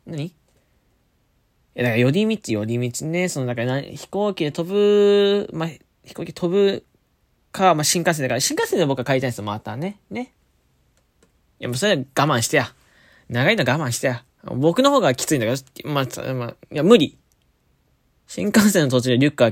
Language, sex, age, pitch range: Japanese, male, 20-39, 125-190 Hz